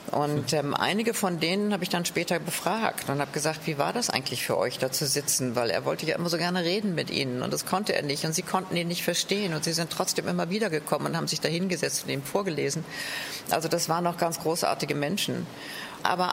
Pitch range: 170-215 Hz